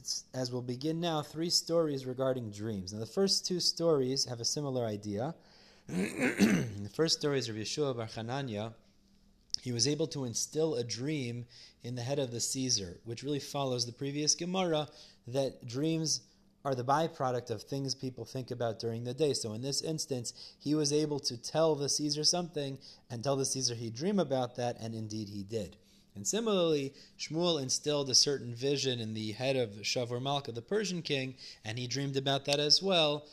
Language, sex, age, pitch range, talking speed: English, male, 30-49, 115-150 Hz, 185 wpm